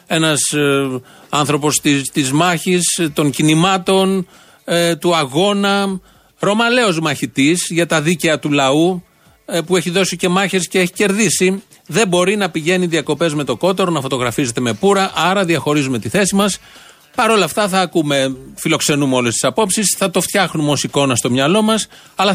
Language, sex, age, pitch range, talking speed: Greek, male, 30-49, 135-190 Hz, 165 wpm